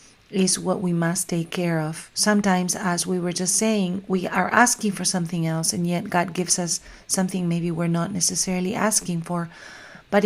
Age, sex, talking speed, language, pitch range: 40-59, female, 185 wpm, English, 175-205 Hz